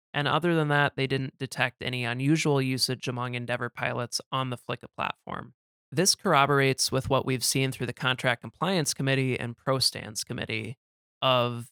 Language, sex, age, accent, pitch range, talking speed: English, male, 20-39, American, 125-140 Hz, 165 wpm